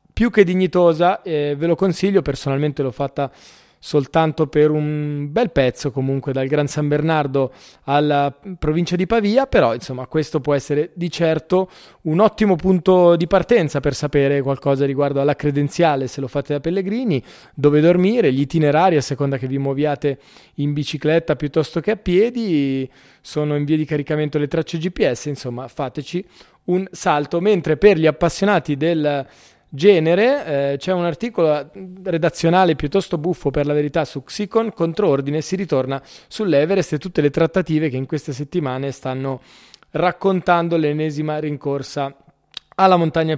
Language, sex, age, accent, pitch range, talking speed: Italian, male, 20-39, native, 140-175 Hz, 155 wpm